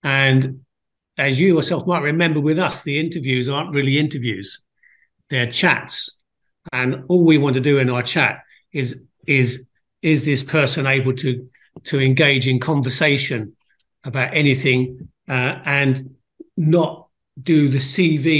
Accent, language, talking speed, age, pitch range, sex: British, English, 140 wpm, 50-69, 125-150 Hz, male